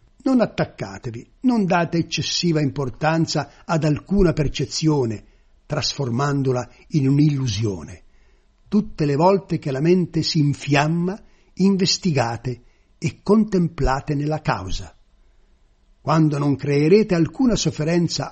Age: 60-79